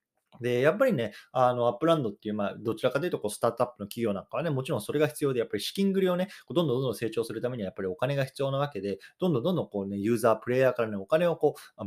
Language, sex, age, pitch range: Japanese, male, 20-39, 105-150 Hz